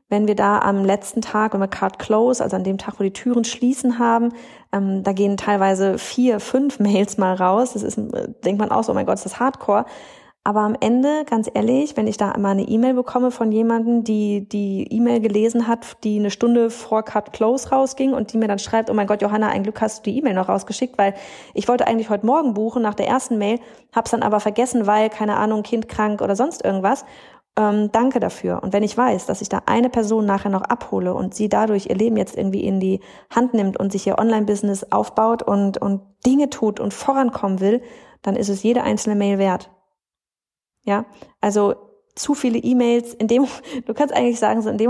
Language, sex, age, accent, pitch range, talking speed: German, female, 30-49, German, 200-240 Hz, 220 wpm